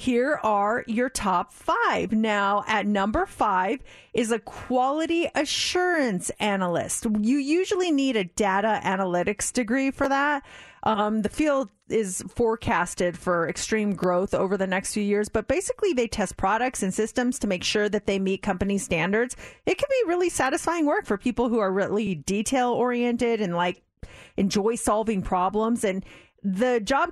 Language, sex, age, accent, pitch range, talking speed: English, female, 40-59, American, 195-245 Hz, 160 wpm